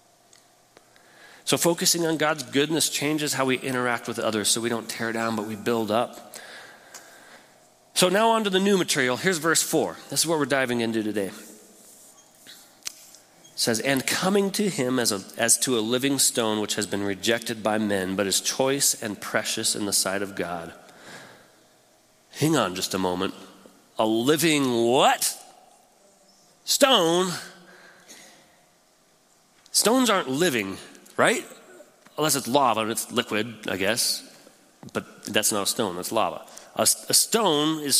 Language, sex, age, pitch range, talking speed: English, male, 30-49, 115-170 Hz, 155 wpm